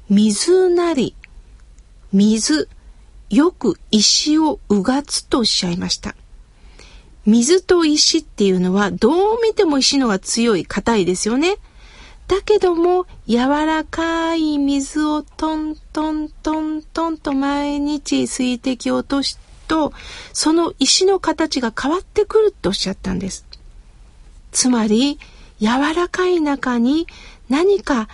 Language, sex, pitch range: Japanese, female, 225-330 Hz